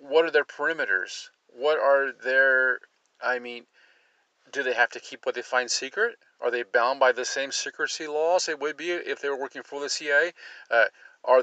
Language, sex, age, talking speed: English, male, 40-59, 200 wpm